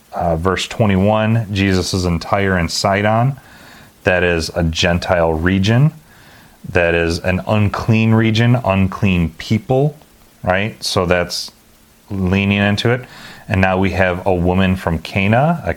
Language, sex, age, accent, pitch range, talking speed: English, male, 30-49, American, 85-110 Hz, 135 wpm